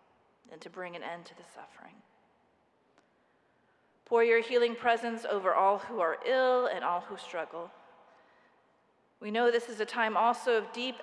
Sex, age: female, 30-49